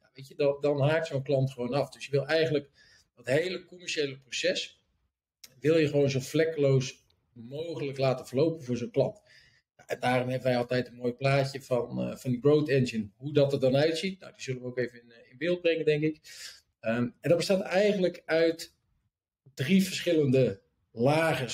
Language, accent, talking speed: Dutch, Dutch, 165 wpm